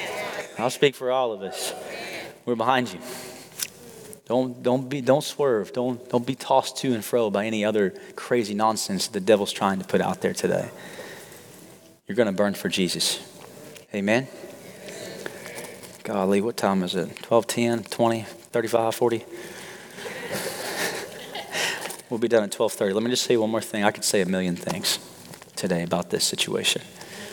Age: 30-49